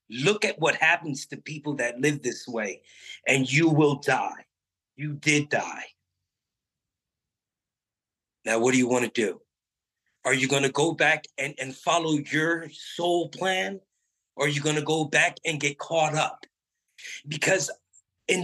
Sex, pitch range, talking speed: male, 135-175 Hz, 160 wpm